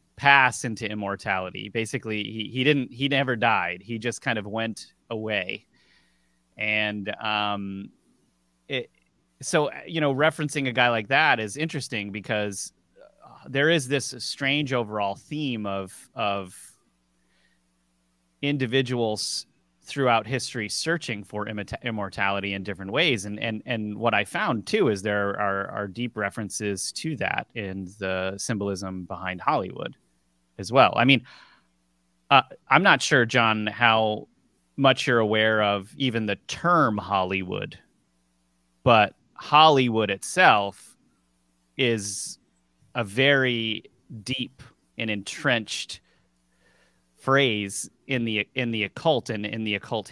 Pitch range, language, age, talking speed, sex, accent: 100-125 Hz, English, 30-49, 125 wpm, male, American